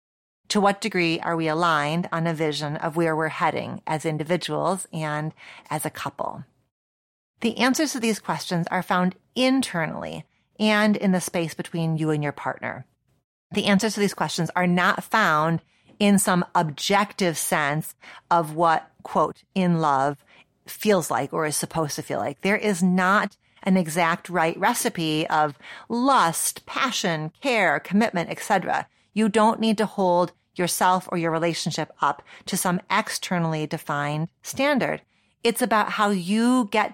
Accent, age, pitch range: American, 30-49, 160-200 Hz